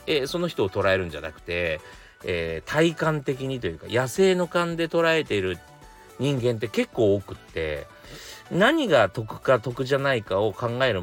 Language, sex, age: Japanese, male, 40-59